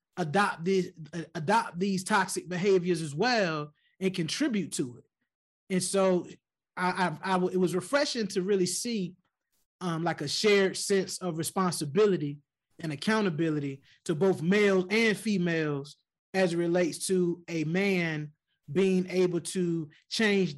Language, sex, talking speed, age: English, male, 140 wpm, 20-39